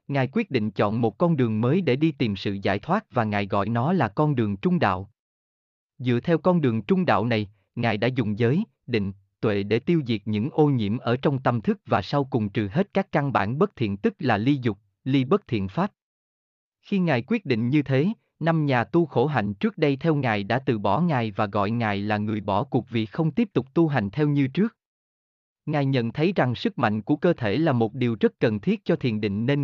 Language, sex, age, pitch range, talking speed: Vietnamese, male, 20-39, 105-155 Hz, 240 wpm